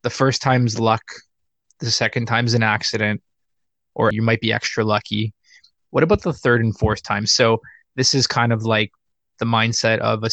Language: English